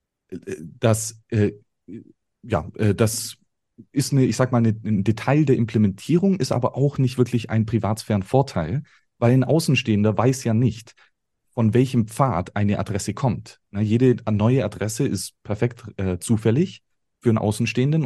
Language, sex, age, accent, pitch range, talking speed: German, male, 30-49, German, 105-130 Hz, 150 wpm